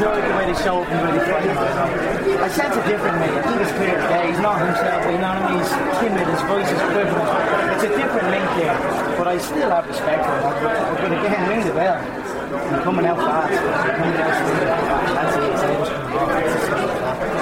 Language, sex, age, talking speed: English, male, 30-49, 175 wpm